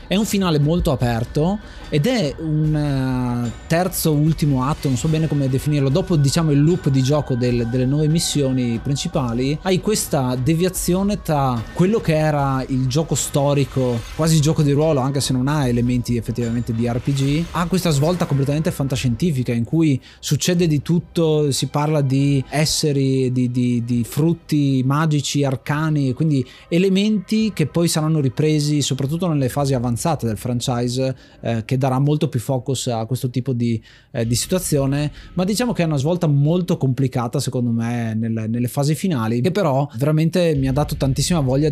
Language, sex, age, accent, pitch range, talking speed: Italian, male, 30-49, native, 125-155 Hz, 165 wpm